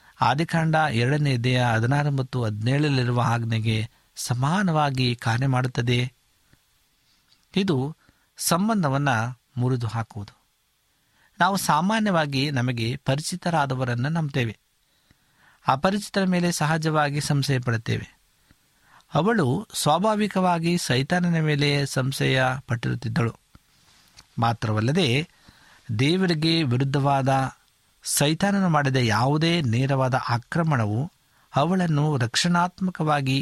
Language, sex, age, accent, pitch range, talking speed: Kannada, male, 60-79, native, 125-155 Hz, 70 wpm